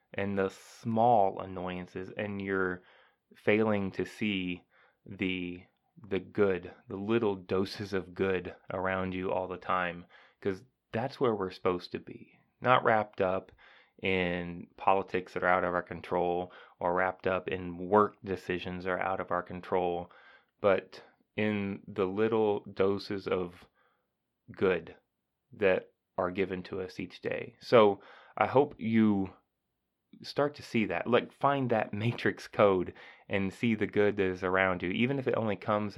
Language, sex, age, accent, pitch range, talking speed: English, male, 20-39, American, 90-105 Hz, 155 wpm